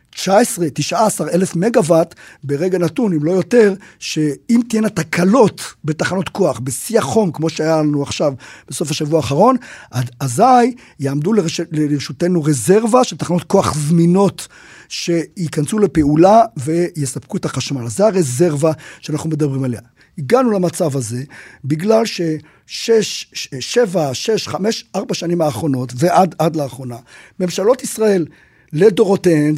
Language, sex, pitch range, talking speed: Hebrew, male, 150-195 Hz, 125 wpm